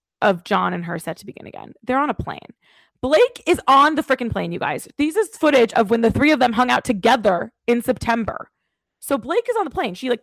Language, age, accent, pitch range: English, 20-39, American, 180-265 Hz